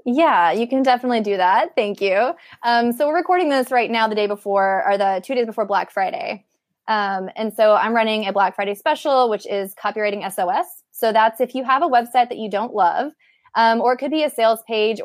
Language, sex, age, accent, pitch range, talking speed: English, female, 20-39, American, 205-240 Hz, 225 wpm